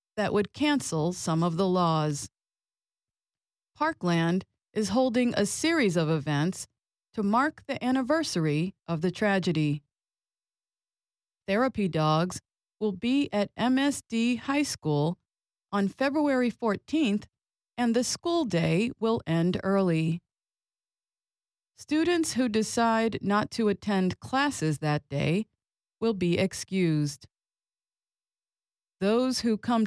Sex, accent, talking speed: female, American, 110 wpm